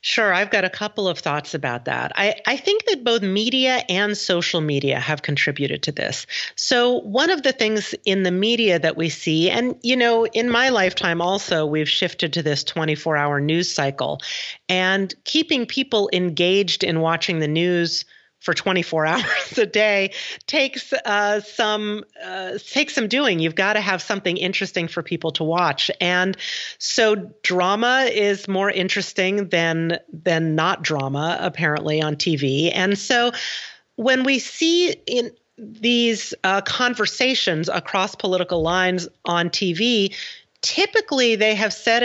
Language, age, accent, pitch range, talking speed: English, 40-59, American, 170-230 Hz, 155 wpm